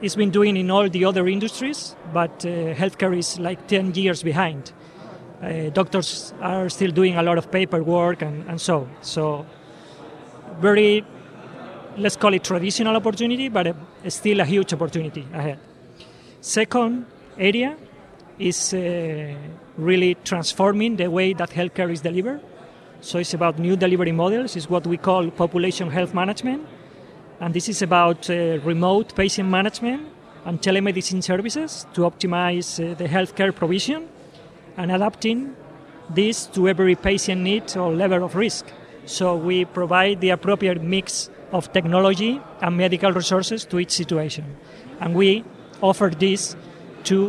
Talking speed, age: 145 wpm, 30-49